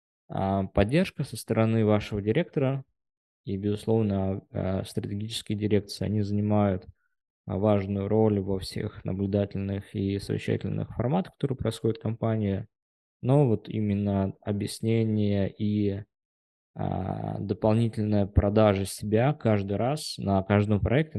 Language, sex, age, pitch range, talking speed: Russian, male, 20-39, 100-115 Hz, 100 wpm